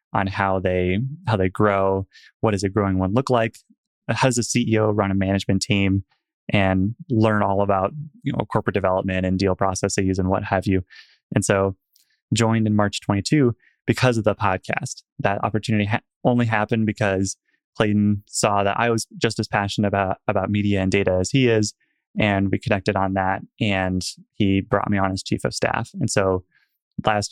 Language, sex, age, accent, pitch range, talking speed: English, male, 20-39, American, 100-115 Hz, 185 wpm